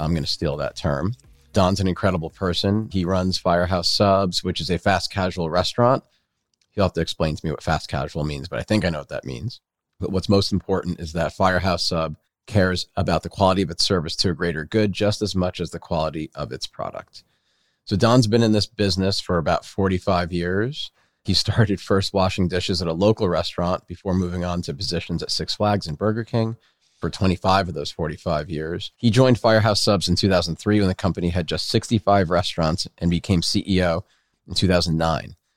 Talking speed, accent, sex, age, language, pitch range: 205 wpm, American, male, 40-59, English, 85-100 Hz